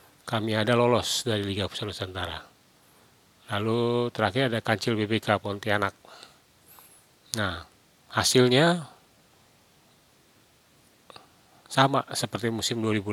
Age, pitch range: 30-49, 105-120 Hz